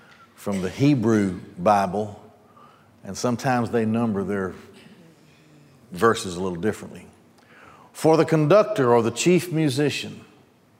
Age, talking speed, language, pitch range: 60-79, 110 wpm, English, 115-135 Hz